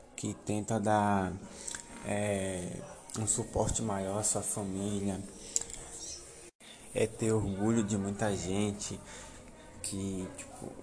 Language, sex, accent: Portuguese, male, Brazilian